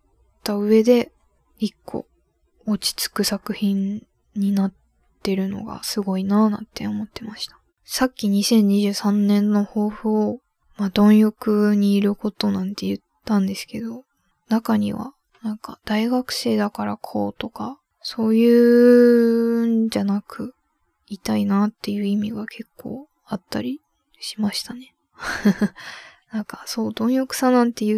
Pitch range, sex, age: 200-230 Hz, female, 10-29